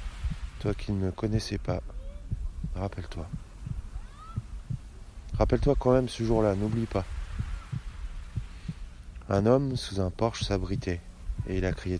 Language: French